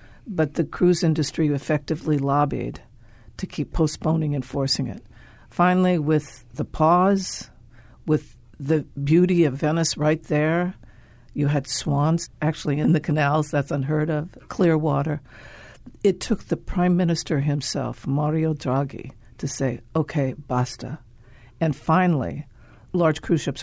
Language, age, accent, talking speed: English, 60-79, American, 130 wpm